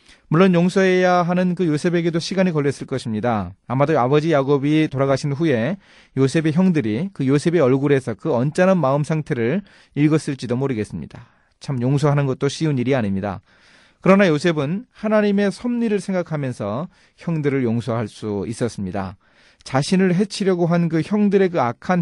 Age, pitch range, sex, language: 40-59, 120-170 Hz, male, Korean